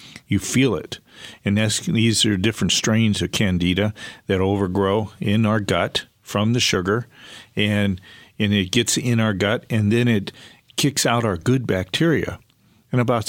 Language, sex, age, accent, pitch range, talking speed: English, male, 50-69, American, 100-120 Hz, 165 wpm